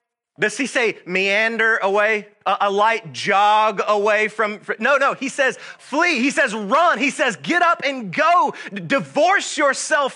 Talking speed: 155 wpm